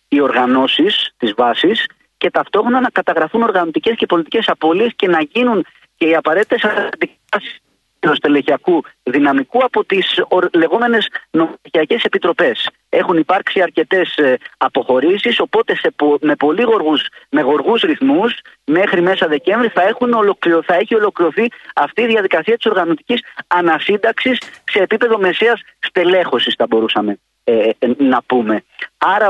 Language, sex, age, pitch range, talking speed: Greek, male, 30-49, 155-250 Hz, 130 wpm